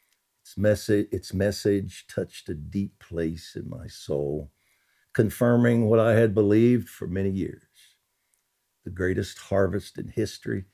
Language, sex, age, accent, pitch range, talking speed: English, male, 60-79, American, 90-125 Hz, 135 wpm